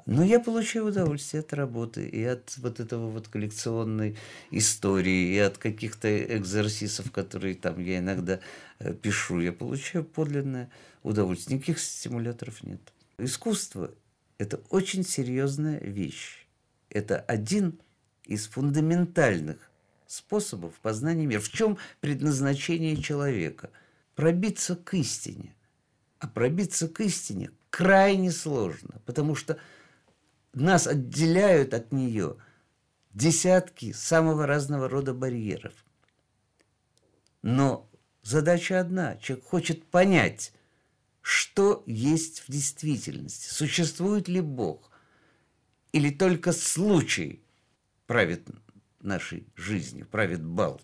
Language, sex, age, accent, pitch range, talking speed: Russian, male, 50-69, native, 110-165 Hz, 100 wpm